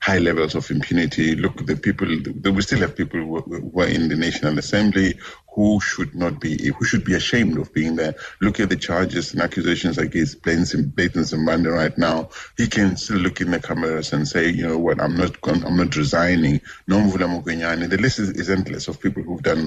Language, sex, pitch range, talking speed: English, male, 80-95 Hz, 225 wpm